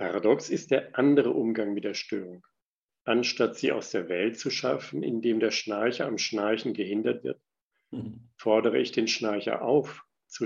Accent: German